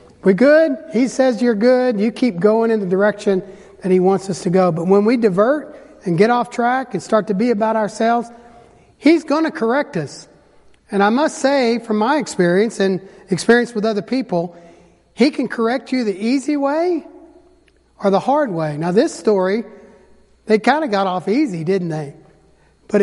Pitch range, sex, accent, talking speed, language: 175-225 Hz, male, American, 190 wpm, English